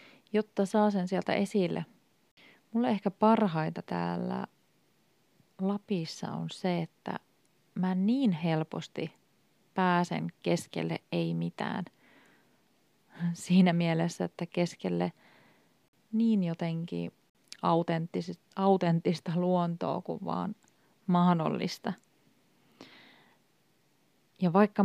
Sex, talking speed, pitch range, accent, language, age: female, 80 wpm, 165-200 Hz, native, Finnish, 30-49